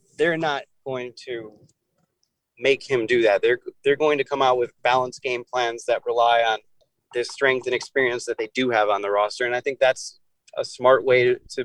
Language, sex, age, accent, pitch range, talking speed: English, male, 30-49, American, 125-155 Hz, 210 wpm